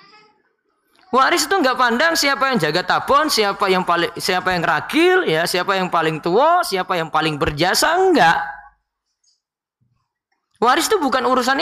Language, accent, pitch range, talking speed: Indonesian, native, 170-285 Hz, 145 wpm